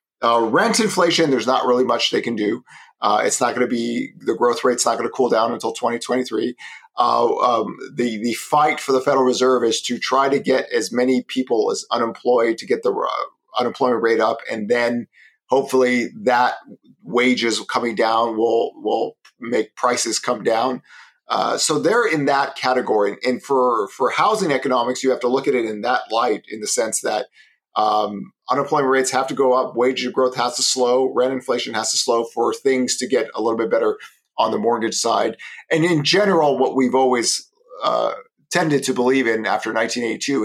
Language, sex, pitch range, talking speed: English, male, 120-140 Hz, 195 wpm